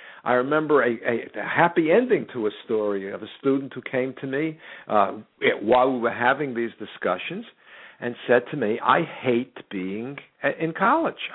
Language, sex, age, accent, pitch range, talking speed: English, male, 60-79, American, 120-175 Hz, 170 wpm